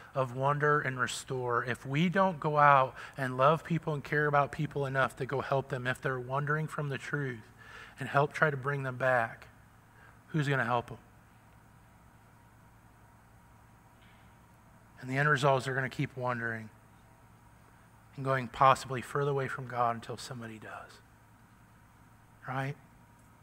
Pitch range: 120-150 Hz